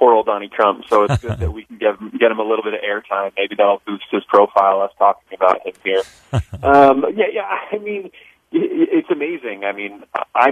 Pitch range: 100-145 Hz